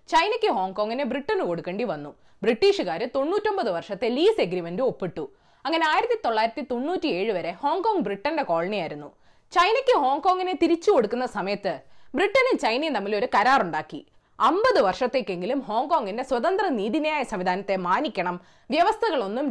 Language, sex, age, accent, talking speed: Malayalam, female, 20-39, native, 115 wpm